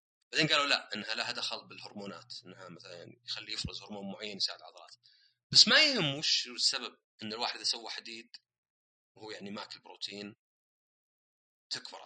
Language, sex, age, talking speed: Arabic, male, 30-49, 155 wpm